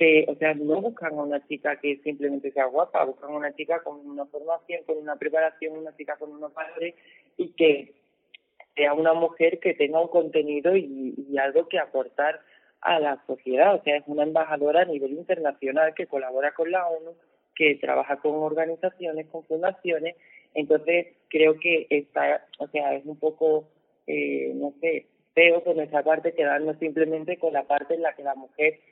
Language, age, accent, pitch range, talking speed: Spanish, 30-49, Spanish, 145-165 Hz, 185 wpm